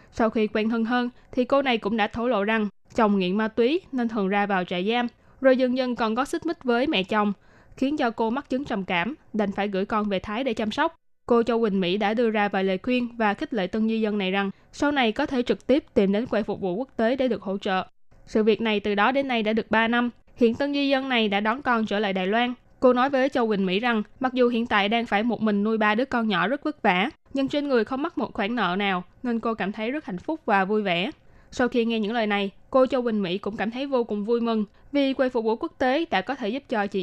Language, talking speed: Vietnamese, 290 wpm